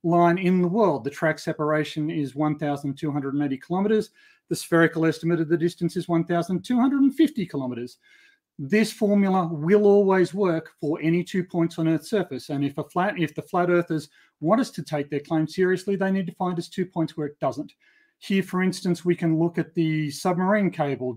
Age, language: 40-59, English